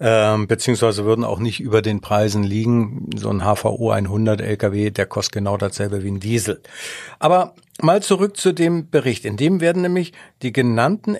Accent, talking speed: German, 170 wpm